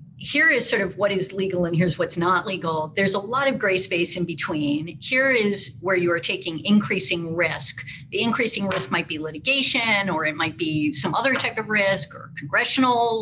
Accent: American